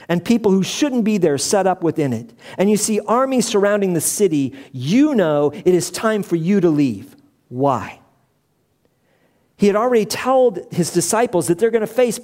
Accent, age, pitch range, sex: American, 50-69, 170-225 Hz, male